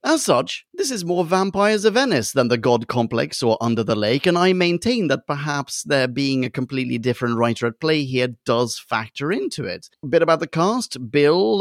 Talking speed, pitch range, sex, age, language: 205 wpm, 120-190 Hz, male, 30-49, English